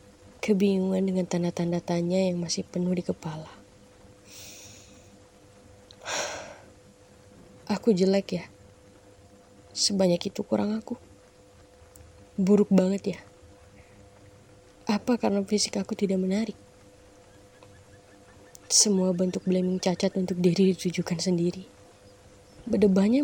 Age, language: 20-39, Indonesian